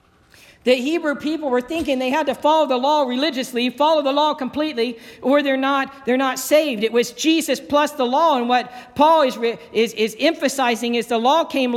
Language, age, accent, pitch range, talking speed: English, 50-69, American, 210-270 Hz, 195 wpm